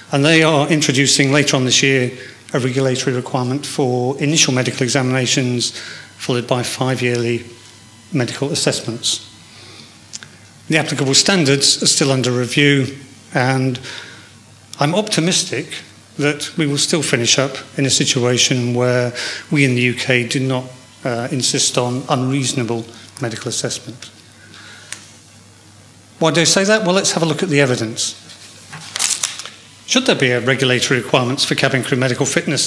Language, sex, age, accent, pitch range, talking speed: English, male, 40-59, British, 125-150 Hz, 140 wpm